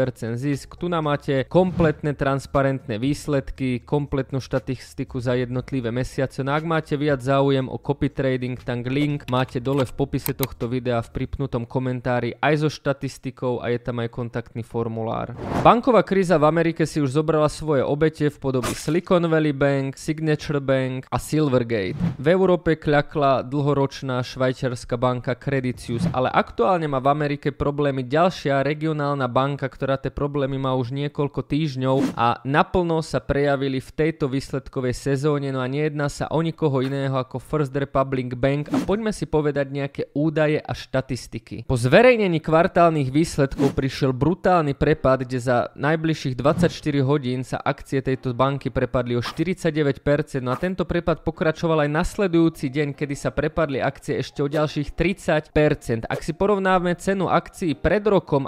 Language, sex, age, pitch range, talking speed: Slovak, male, 20-39, 130-155 Hz, 155 wpm